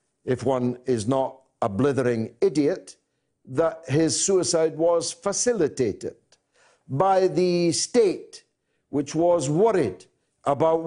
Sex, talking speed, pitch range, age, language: male, 105 wpm, 110-185 Hz, 60-79, English